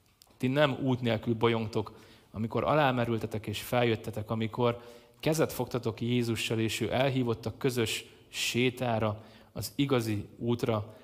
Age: 30-49